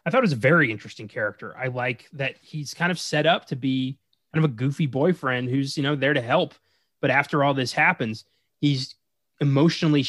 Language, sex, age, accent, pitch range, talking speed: English, male, 20-39, American, 125-155 Hz, 215 wpm